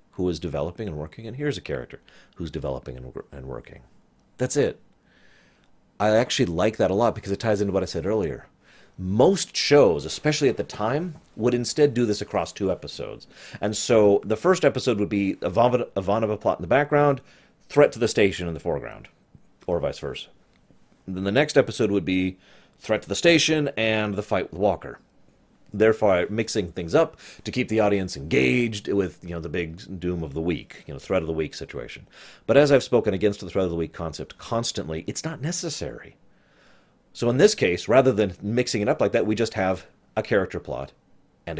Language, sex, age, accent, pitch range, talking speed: English, male, 30-49, American, 90-125 Hz, 200 wpm